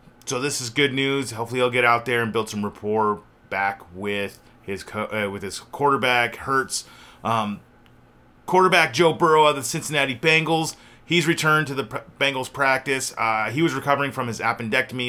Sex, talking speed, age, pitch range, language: male, 180 wpm, 30-49, 115-140 Hz, English